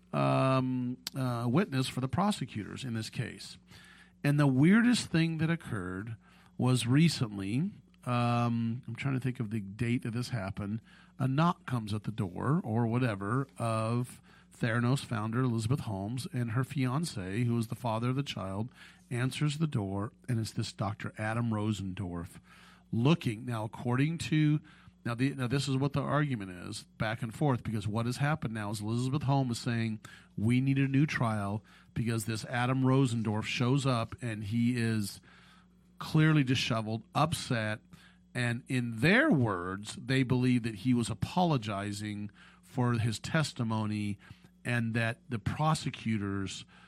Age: 40-59